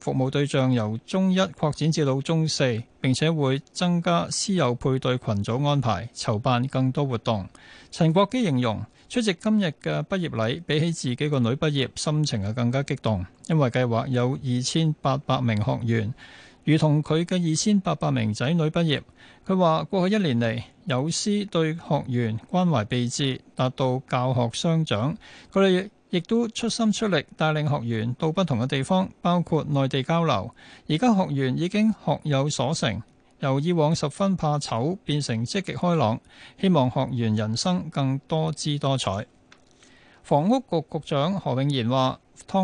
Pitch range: 125-165 Hz